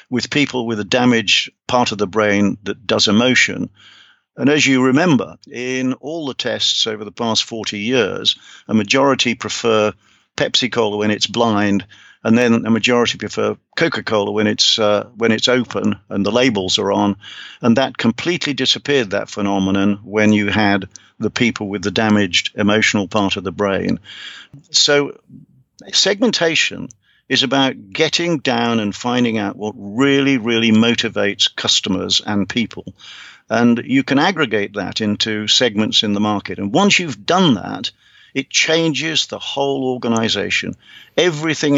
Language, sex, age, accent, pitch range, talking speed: English, male, 50-69, British, 105-130 Hz, 145 wpm